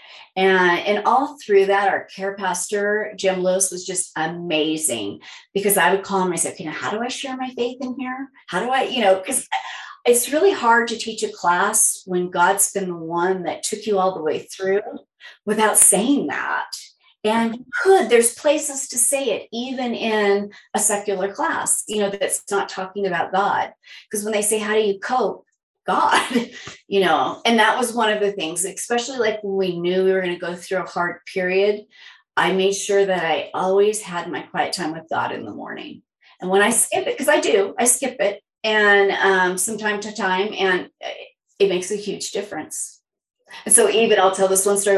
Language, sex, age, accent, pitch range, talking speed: English, female, 30-49, American, 185-225 Hz, 205 wpm